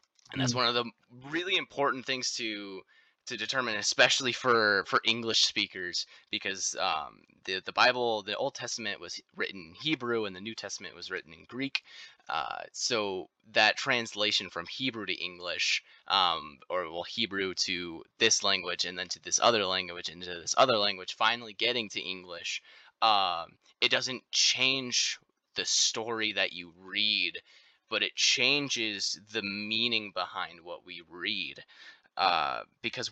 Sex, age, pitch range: male, 20-39, 95-125 Hz